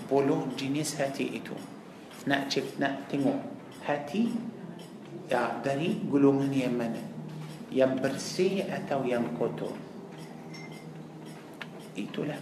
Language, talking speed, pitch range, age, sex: Malay, 75 wpm, 140-200 Hz, 50-69, male